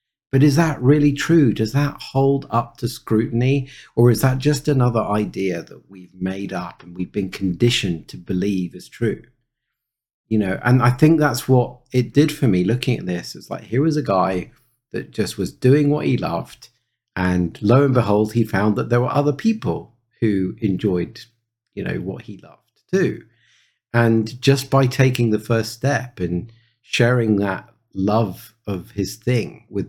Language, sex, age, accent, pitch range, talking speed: English, male, 50-69, British, 110-130 Hz, 180 wpm